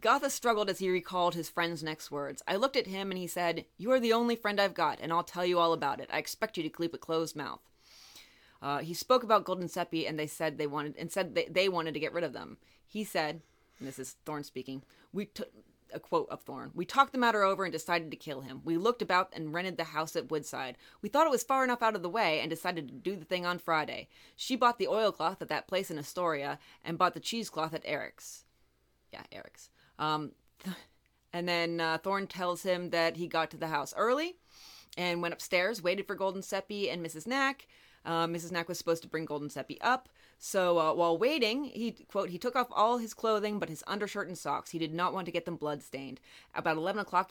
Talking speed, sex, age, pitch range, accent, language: 235 wpm, female, 30-49, 160-195 Hz, American, English